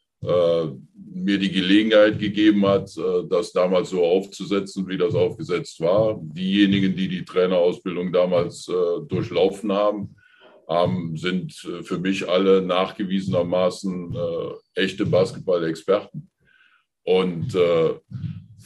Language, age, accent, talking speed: German, 50-69, German, 110 wpm